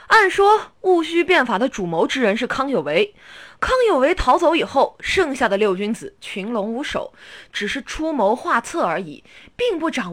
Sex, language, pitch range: female, Chinese, 225-360 Hz